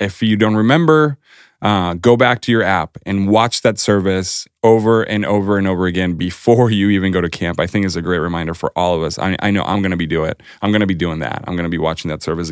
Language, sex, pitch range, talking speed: English, male, 95-115 Hz, 280 wpm